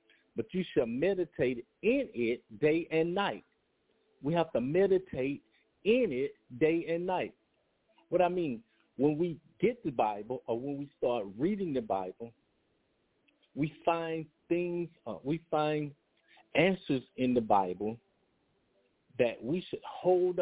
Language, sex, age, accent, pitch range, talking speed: English, male, 50-69, American, 125-180 Hz, 140 wpm